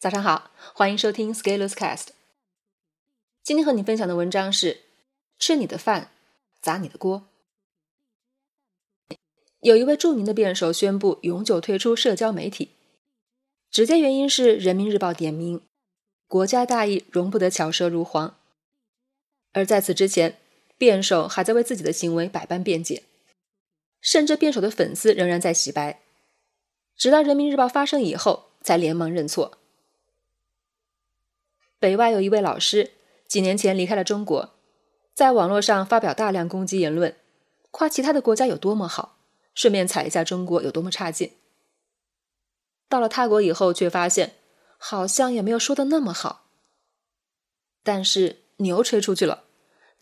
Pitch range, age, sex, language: 180-255 Hz, 20-39, female, Chinese